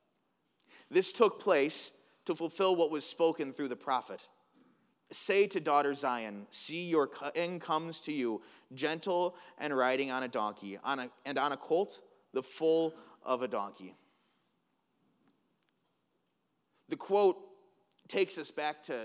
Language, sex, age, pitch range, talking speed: English, male, 30-49, 125-175 Hz, 130 wpm